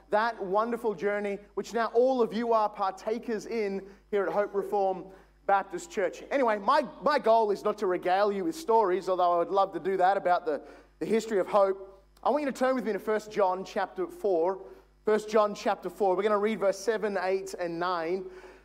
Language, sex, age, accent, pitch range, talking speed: English, male, 30-49, Australian, 190-235 Hz, 210 wpm